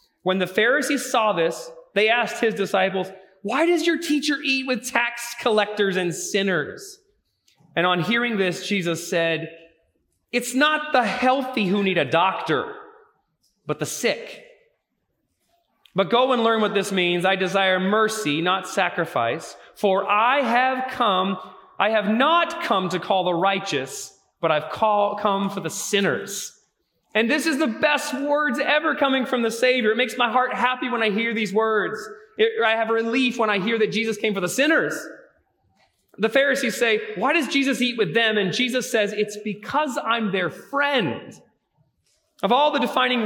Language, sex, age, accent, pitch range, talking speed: English, male, 30-49, American, 190-255 Hz, 165 wpm